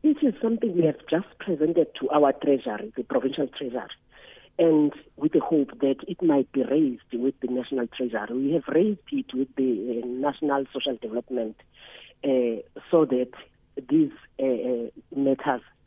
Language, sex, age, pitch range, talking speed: English, female, 40-59, 135-200 Hz, 160 wpm